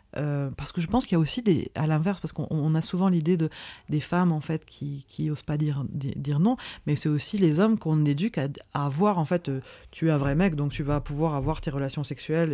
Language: French